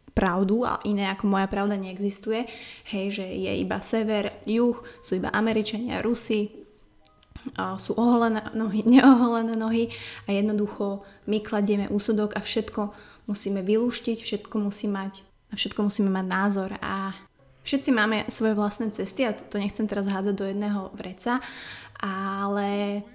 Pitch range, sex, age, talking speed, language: 200-220 Hz, female, 20-39, 135 wpm, Slovak